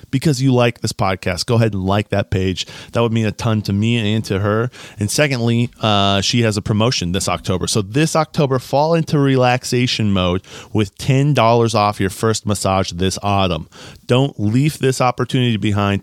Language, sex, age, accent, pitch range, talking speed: English, male, 30-49, American, 95-115 Hz, 185 wpm